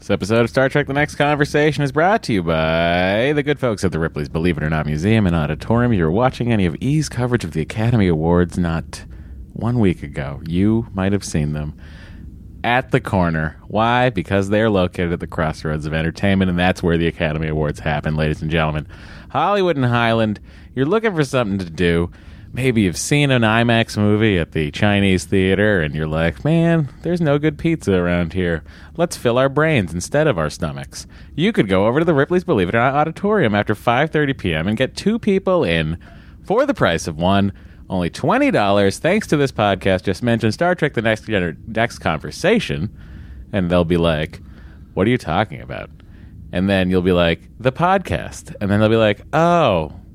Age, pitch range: 30-49, 80-125 Hz